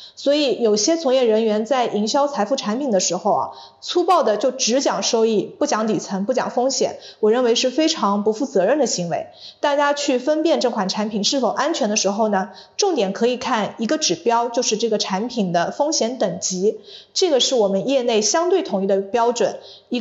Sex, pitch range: female, 210-290 Hz